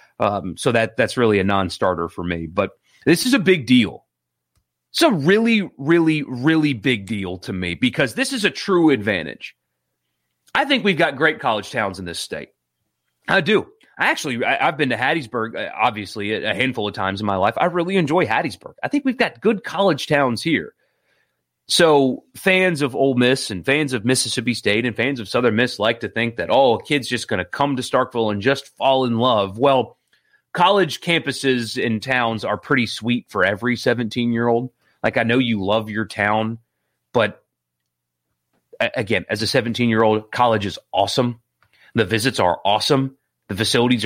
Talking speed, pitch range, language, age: 185 wpm, 105-135 Hz, English, 30-49